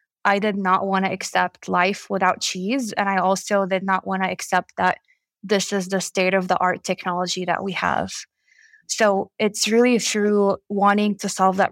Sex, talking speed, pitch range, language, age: female, 180 wpm, 190-215 Hz, English, 20-39